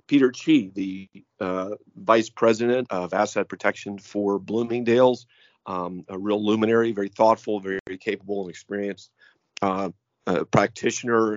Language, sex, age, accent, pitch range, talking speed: English, male, 40-59, American, 100-120 Hz, 120 wpm